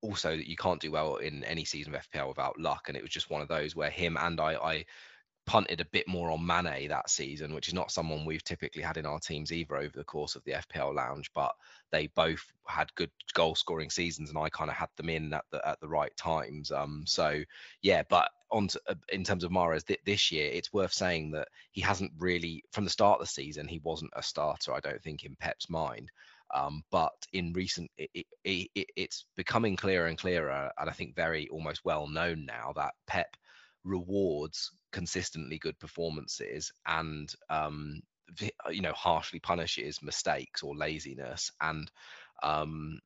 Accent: British